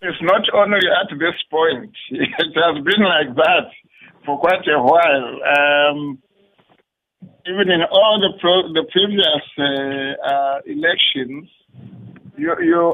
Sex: male